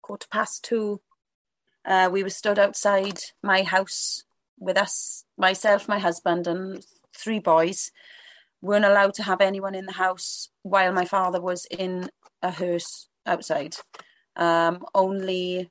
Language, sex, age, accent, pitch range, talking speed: English, female, 30-49, British, 185-205 Hz, 140 wpm